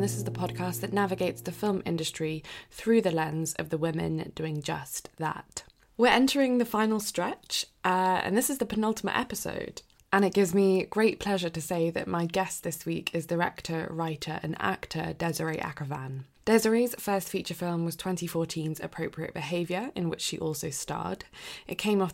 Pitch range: 160-195 Hz